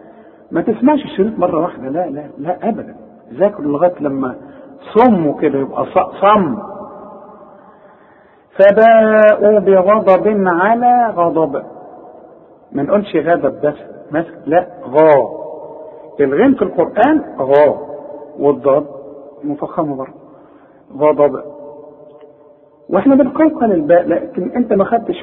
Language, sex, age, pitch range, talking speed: Arabic, male, 50-69, 150-215 Hz, 100 wpm